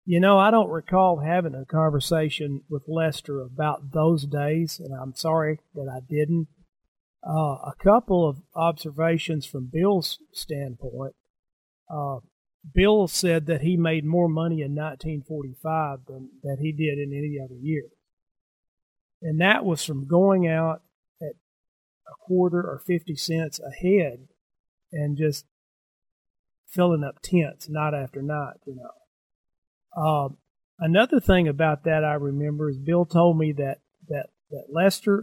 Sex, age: male, 40-59